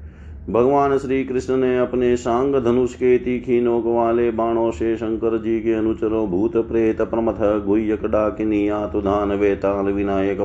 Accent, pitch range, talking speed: native, 100-120 Hz, 140 wpm